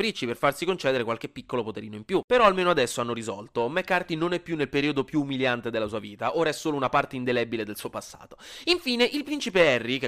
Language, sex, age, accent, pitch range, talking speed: Italian, male, 20-39, native, 120-190 Hz, 225 wpm